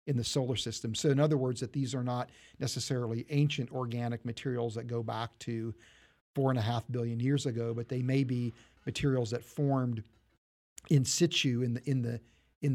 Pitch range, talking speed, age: 115-135 Hz, 195 wpm, 40-59